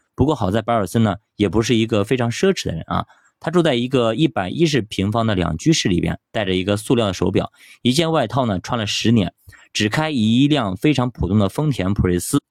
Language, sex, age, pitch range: Chinese, male, 20-39, 95-140 Hz